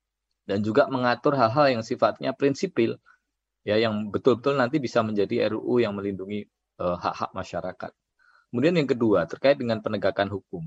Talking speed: 145 wpm